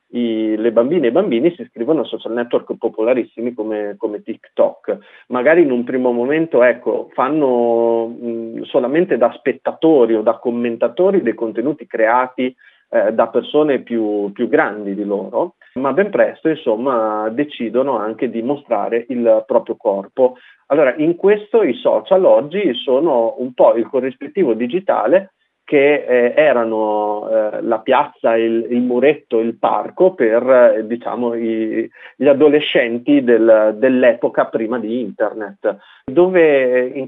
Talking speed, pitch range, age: 135 wpm, 115-150 Hz, 30-49